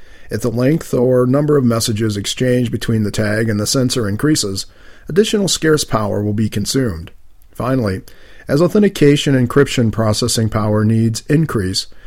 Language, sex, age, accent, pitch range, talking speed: English, male, 50-69, American, 105-135 Hz, 145 wpm